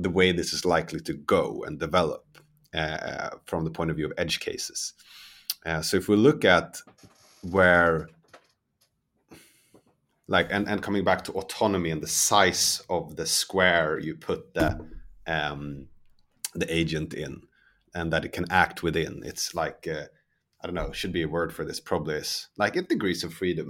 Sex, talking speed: male, 175 wpm